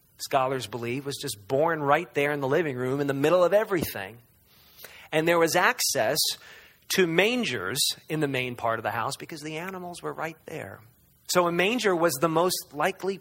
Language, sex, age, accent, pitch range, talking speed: English, male, 40-59, American, 140-180 Hz, 190 wpm